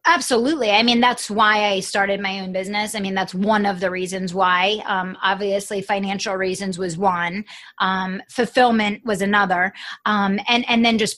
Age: 20-39